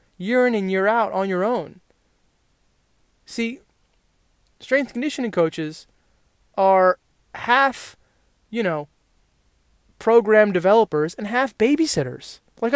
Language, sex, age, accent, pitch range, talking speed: English, male, 20-39, American, 150-205 Hz, 110 wpm